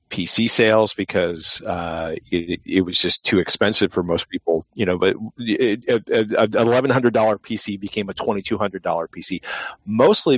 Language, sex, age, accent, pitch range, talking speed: English, male, 40-59, American, 95-115 Hz, 135 wpm